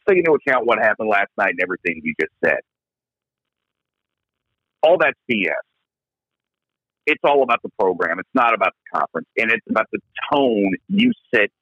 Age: 50-69